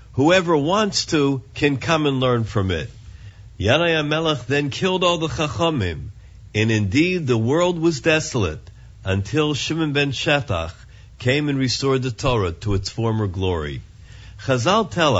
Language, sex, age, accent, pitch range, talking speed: English, male, 50-69, American, 105-145 Hz, 145 wpm